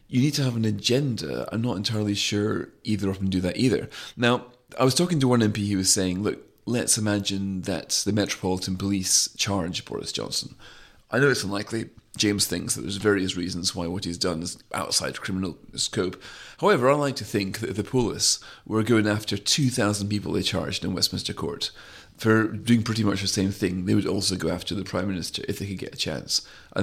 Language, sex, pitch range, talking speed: English, male, 95-115 Hz, 210 wpm